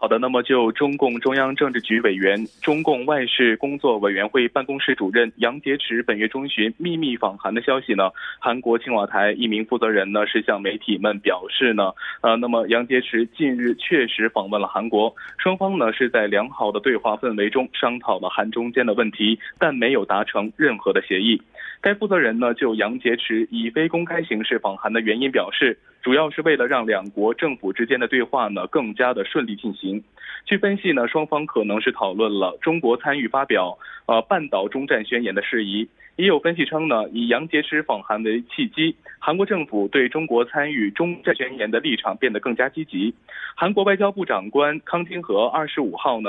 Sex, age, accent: male, 20-39, Chinese